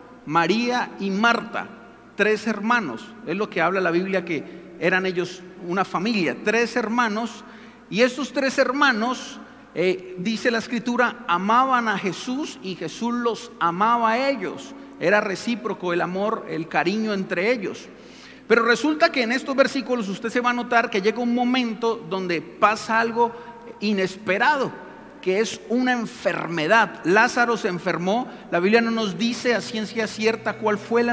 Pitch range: 185-240 Hz